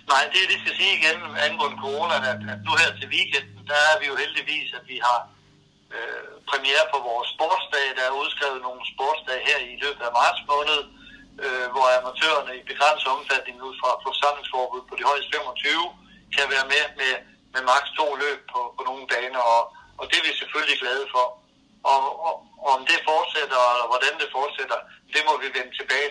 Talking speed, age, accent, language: 200 wpm, 60-79, native, Danish